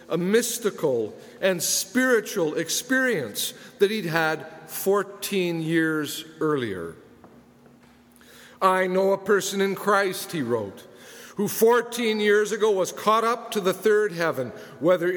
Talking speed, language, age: 125 wpm, English, 50-69